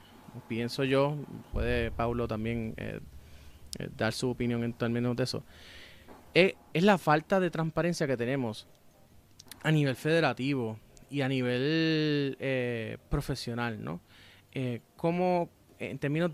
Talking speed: 120 wpm